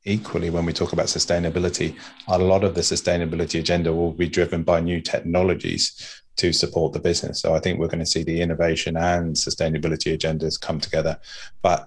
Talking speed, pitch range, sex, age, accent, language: 185 wpm, 85-90 Hz, male, 30-49, British, English